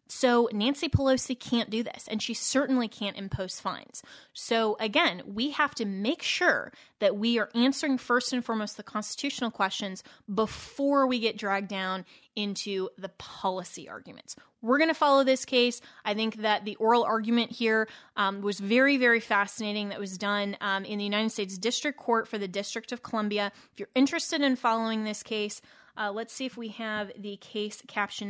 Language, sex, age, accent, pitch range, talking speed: English, female, 20-39, American, 205-245 Hz, 185 wpm